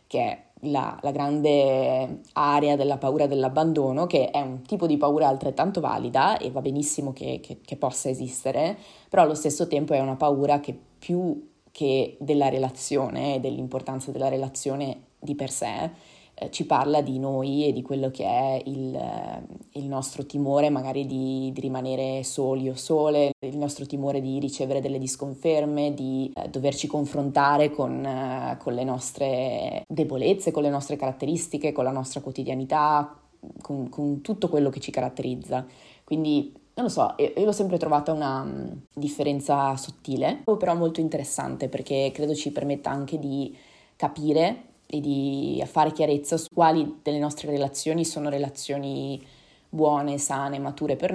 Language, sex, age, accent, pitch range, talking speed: Italian, female, 20-39, native, 135-150 Hz, 155 wpm